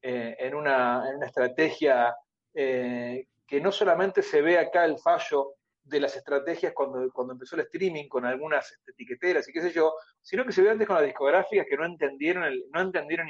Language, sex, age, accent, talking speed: Spanish, male, 40-59, Argentinian, 205 wpm